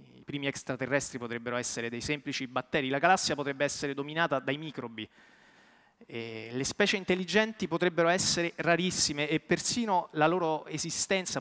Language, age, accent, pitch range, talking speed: Italian, 30-49, native, 130-165 Hz, 130 wpm